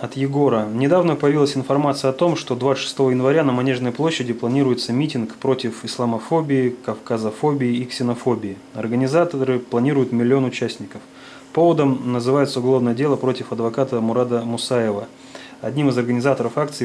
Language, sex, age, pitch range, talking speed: Russian, male, 20-39, 120-135 Hz, 130 wpm